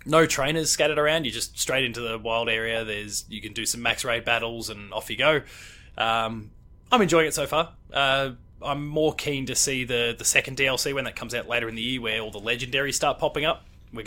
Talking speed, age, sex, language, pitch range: 235 wpm, 20-39, male, English, 115-140 Hz